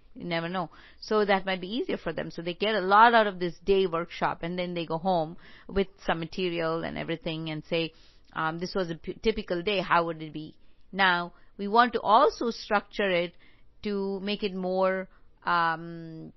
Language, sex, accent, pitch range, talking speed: English, female, Indian, 175-220 Hz, 200 wpm